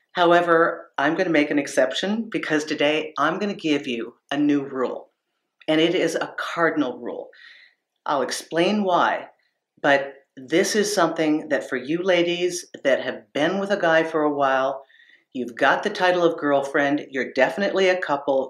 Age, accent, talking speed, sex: 50-69, American, 170 wpm, female